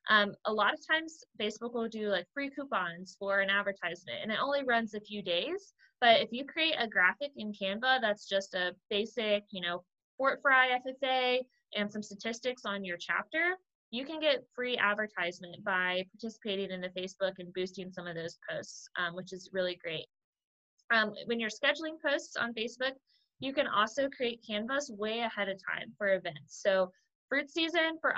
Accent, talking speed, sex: American, 185 wpm, female